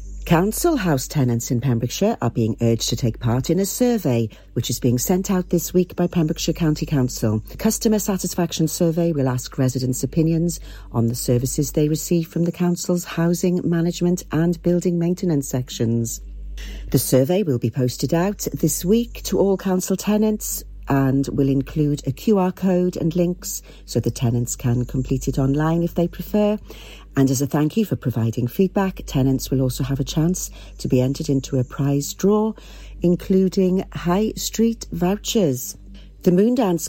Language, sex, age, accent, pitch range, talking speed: English, female, 50-69, British, 130-185 Hz, 170 wpm